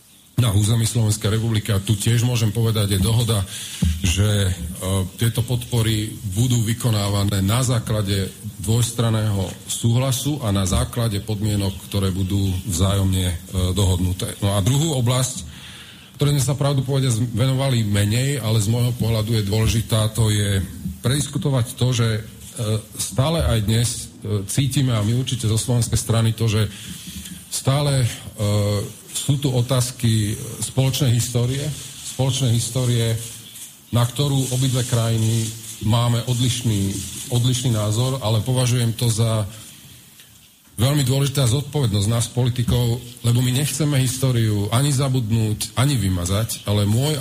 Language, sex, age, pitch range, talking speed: Slovak, male, 40-59, 105-125 Hz, 130 wpm